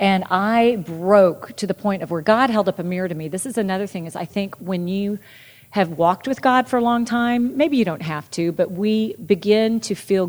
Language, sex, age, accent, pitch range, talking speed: English, female, 40-59, American, 160-210 Hz, 245 wpm